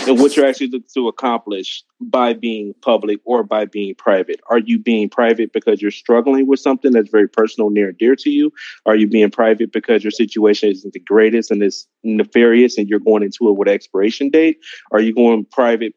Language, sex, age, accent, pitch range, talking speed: English, male, 30-49, American, 110-130 Hz, 215 wpm